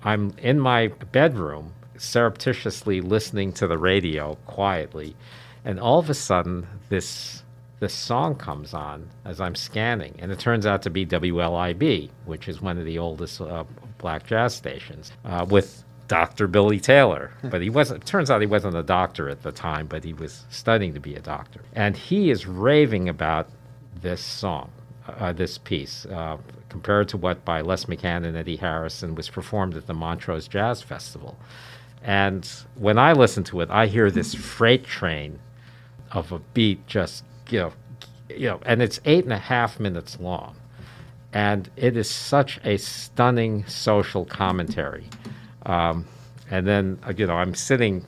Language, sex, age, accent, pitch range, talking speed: English, male, 50-69, American, 90-125 Hz, 170 wpm